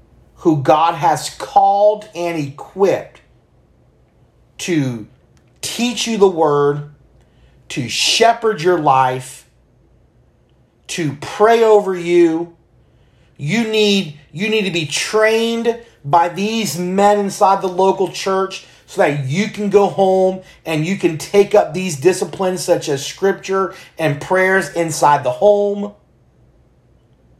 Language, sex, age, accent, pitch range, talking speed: English, male, 40-59, American, 145-200 Hz, 120 wpm